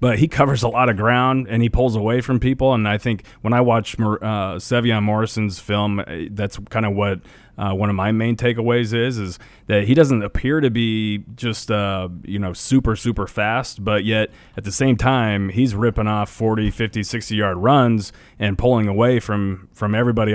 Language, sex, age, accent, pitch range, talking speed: English, male, 30-49, American, 100-115 Hz, 200 wpm